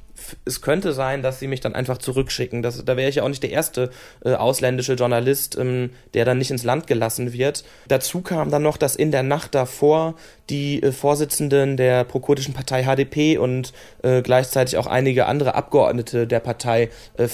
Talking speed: 185 wpm